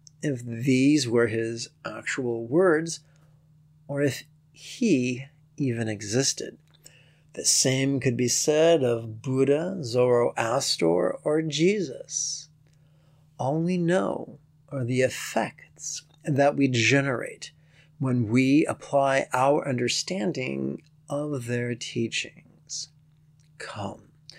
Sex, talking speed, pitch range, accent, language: male, 95 wpm, 130-155 Hz, American, English